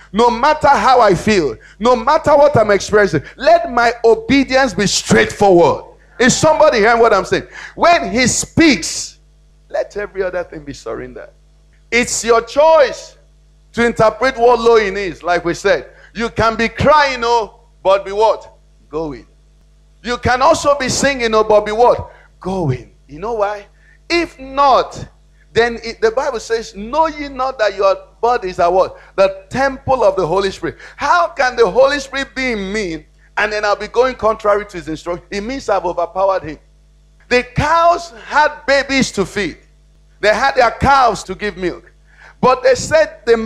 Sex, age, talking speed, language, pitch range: male, 50-69, 175 wpm, English, 195-275 Hz